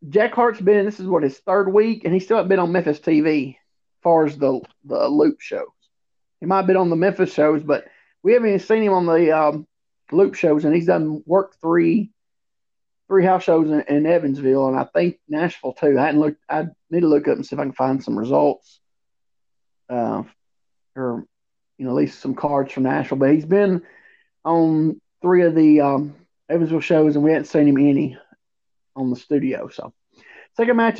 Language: English